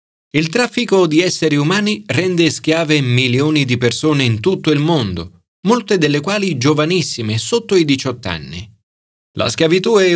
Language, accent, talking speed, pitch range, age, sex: Italian, native, 150 wpm, 110-170 Hz, 40-59, male